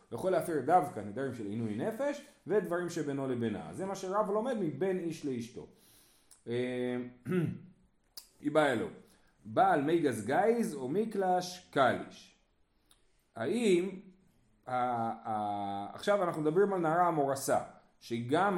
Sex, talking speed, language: male, 115 wpm, Hebrew